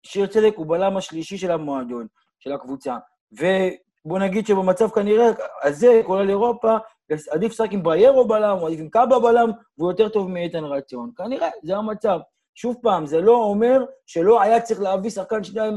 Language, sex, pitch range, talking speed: Hebrew, male, 170-250 Hz, 165 wpm